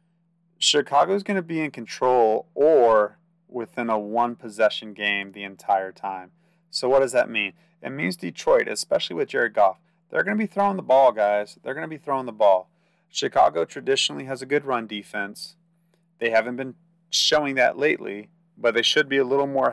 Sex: male